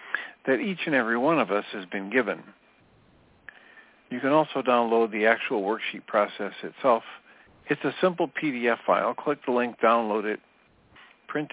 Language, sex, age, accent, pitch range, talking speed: English, male, 50-69, American, 105-130 Hz, 155 wpm